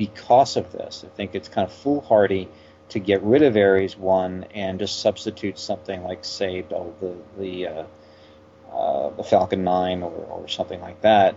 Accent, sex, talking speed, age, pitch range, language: American, male, 180 wpm, 40-59, 85-105 Hz, English